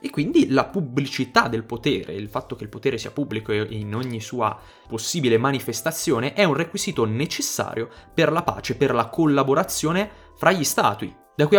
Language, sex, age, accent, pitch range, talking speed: Italian, male, 20-39, native, 110-135 Hz, 170 wpm